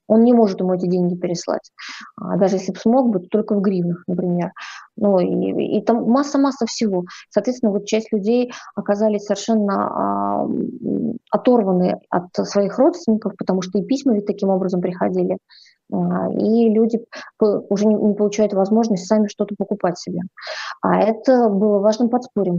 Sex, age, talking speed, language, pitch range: female, 20-39, 150 wpm, Russian, 195-230 Hz